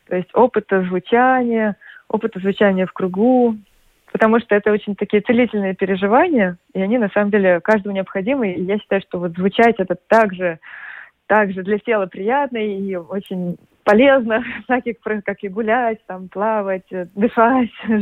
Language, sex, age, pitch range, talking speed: Russian, female, 20-39, 195-240 Hz, 145 wpm